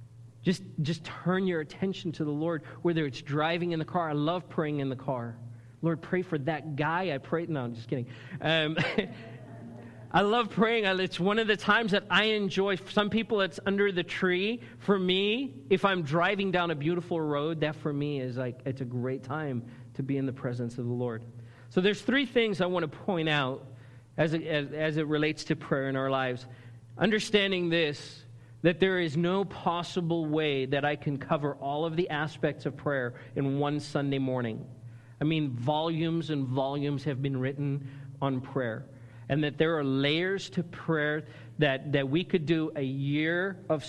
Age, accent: 40-59, American